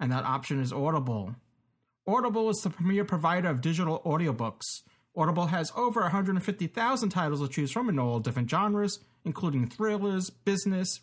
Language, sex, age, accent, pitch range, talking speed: English, male, 40-59, American, 135-210 Hz, 150 wpm